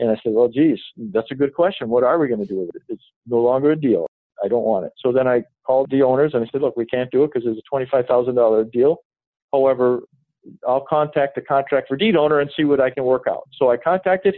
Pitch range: 125-150 Hz